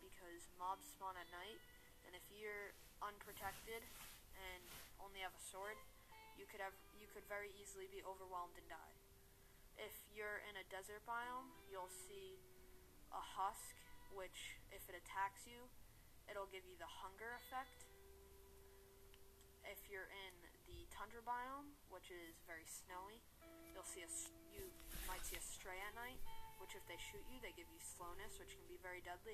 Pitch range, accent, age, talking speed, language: 175-225 Hz, American, 10-29, 165 wpm, English